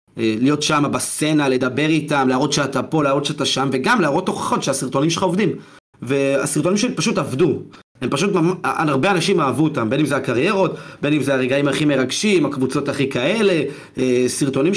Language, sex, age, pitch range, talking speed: Hebrew, male, 30-49, 140-210 Hz, 165 wpm